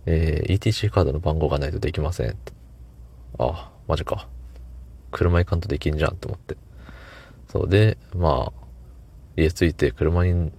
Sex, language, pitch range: male, Japanese, 70-95 Hz